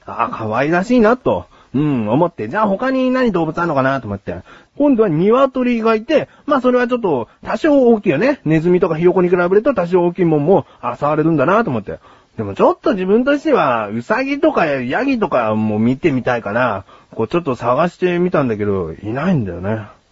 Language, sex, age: Japanese, male, 30-49